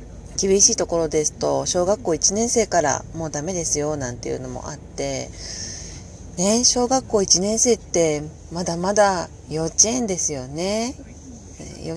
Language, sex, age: Japanese, female, 30-49